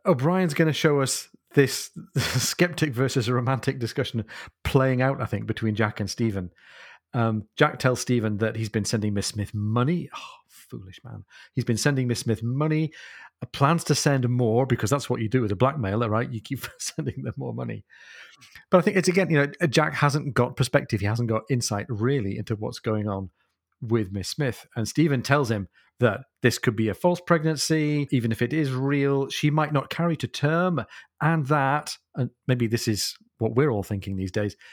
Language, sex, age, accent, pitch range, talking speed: English, male, 40-59, British, 110-140 Hz, 195 wpm